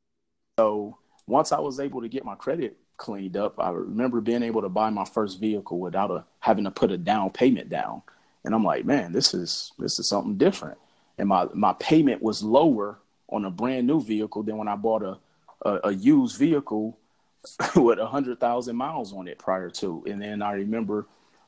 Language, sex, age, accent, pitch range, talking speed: English, male, 30-49, American, 105-125 Hz, 200 wpm